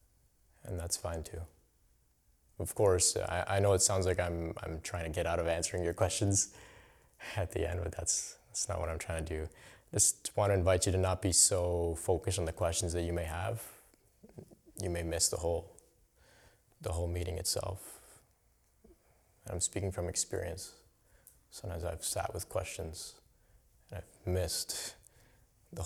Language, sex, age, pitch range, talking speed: English, male, 20-39, 85-100 Hz, 170 wpm